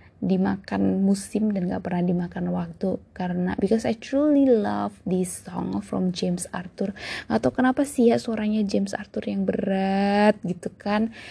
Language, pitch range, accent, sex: Indonesian, 190-240 Hz, native, female